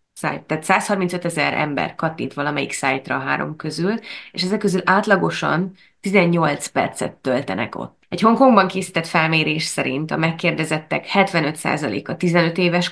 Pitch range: 155-185 Hz